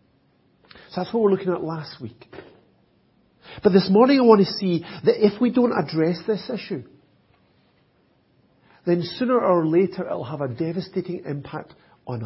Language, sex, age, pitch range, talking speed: English, male, 50-69, 130-190 Hz, 165 wpm